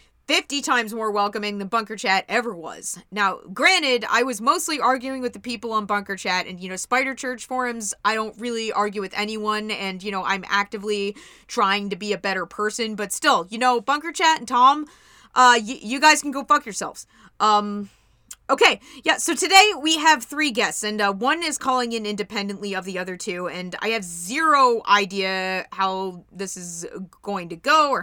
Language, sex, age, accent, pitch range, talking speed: English, female, 30-49, American, 200-260 Hz, 195 wpm